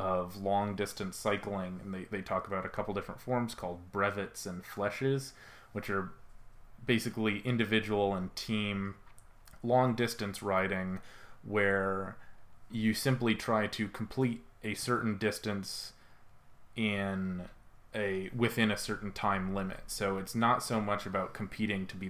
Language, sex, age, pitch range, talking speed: English, male, 30-49, 95-115 Hz, 140 wpm